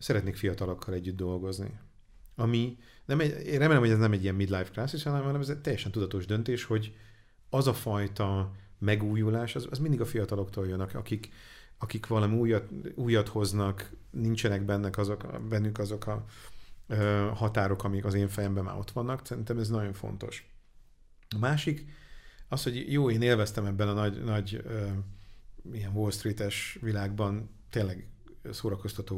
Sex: male